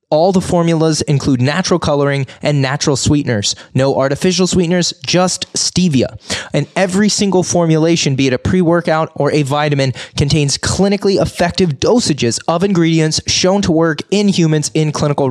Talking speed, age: 150 wpm, 20-39